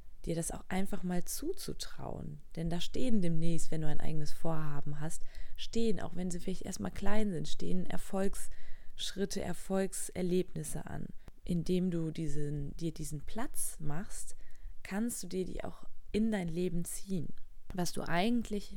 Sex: female